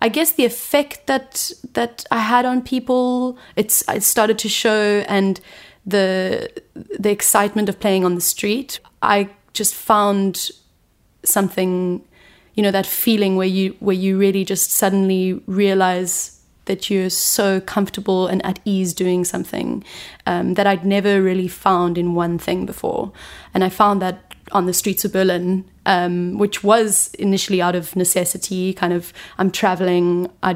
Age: 20-39